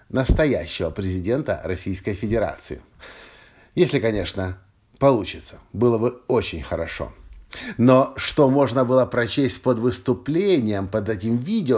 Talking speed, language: 105 wpm, Russian